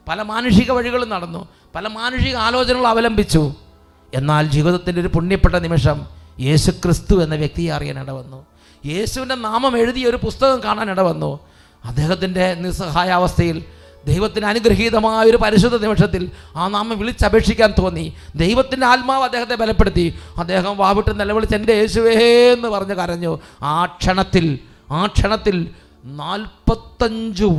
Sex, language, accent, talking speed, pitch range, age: male, English, Indian, 110 wpm, 170-225 Hz, 30-49